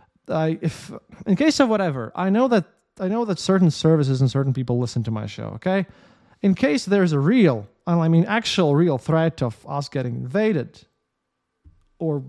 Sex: male